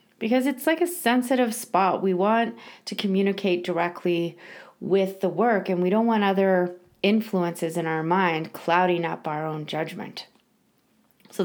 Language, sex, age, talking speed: English, female, 30-49, 150 wpm